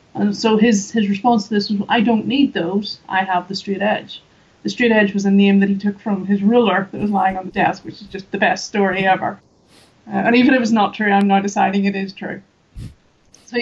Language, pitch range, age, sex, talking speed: English, 200-225 Hz, 30-49, female, 250 wpm